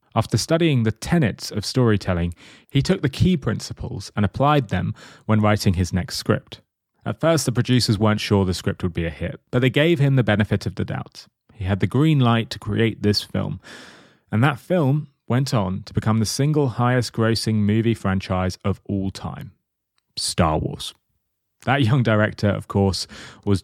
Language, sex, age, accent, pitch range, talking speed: English, male, 30-49, British, 100-125 Hz, 185 wpm